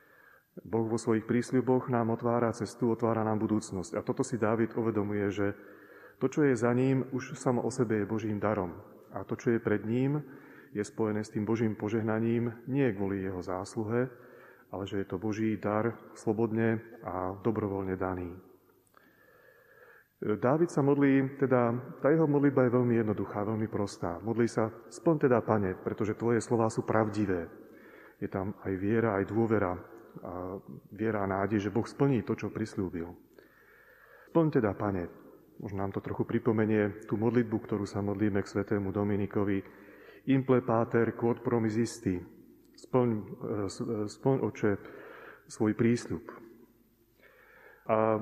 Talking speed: 145 wpm